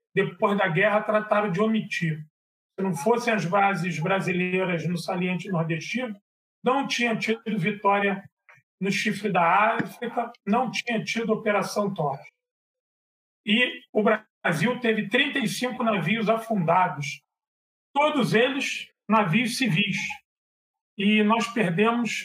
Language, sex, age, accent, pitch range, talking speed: Portuguese, male, 40-59, Brazilian, 190-225 Hz, 115 wpm